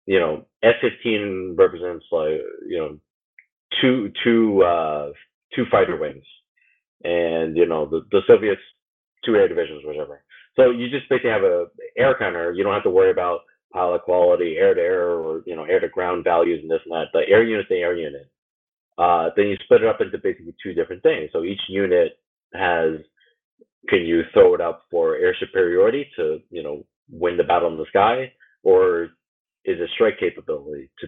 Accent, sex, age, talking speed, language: American, male, 30-49, 190 wpm, English